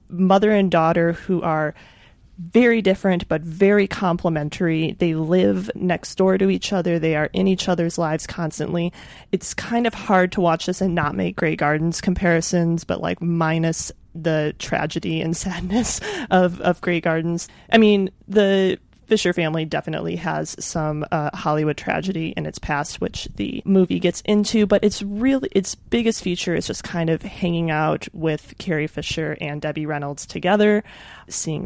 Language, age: English, 30-49